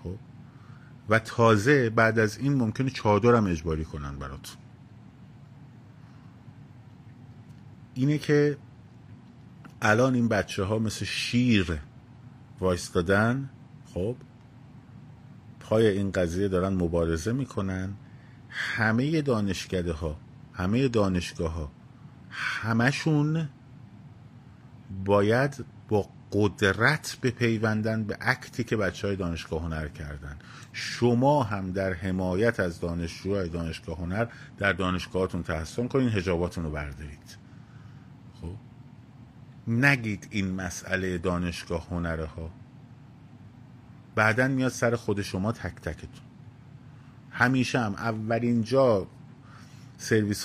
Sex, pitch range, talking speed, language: male, 95-130 Hz, 95 wpm, Persian